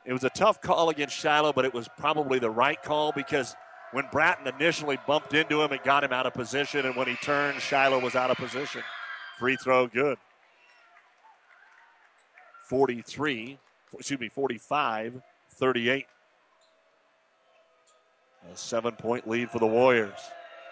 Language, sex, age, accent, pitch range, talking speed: English, male, 40-59, American, 120-145 Hz, 150 wpm